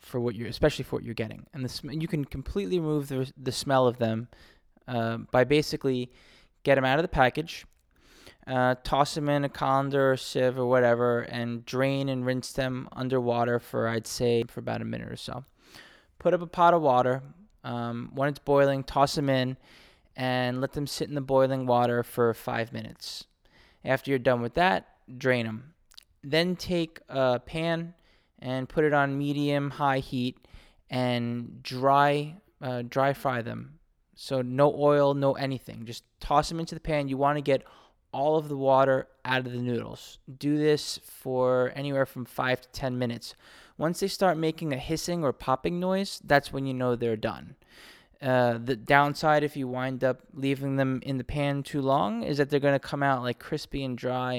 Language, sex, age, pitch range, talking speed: English, male, 20-39, 125-145 Hz, 190 wpm